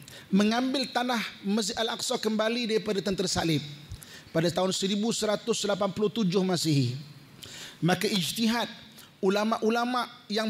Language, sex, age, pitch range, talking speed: Malay, male, 30-49, 190-235 Hz, 90 wpm